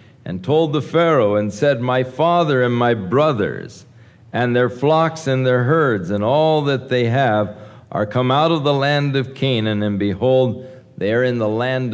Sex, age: male, 50-69